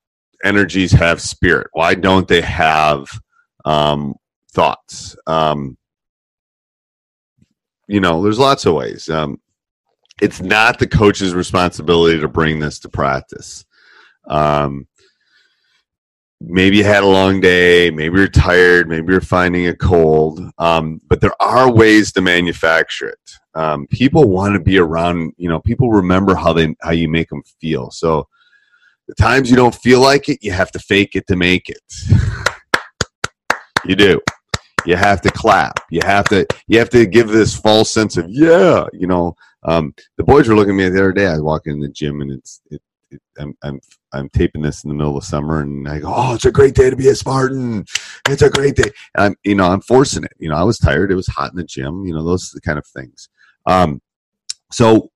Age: 30-49